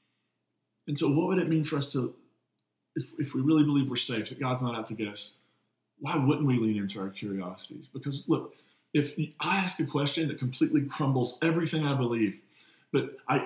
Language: English